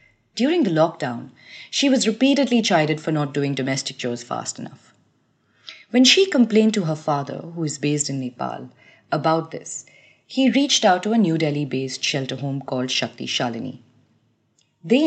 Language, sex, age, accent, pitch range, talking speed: English, female, 30-49, Indian, 135-210 Hz, 160 wpm